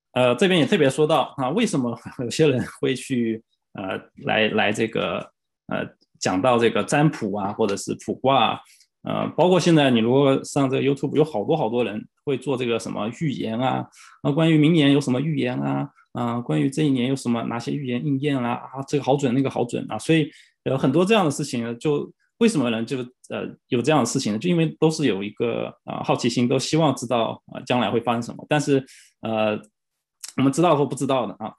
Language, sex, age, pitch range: English, male, 20-39, 115-150 Hz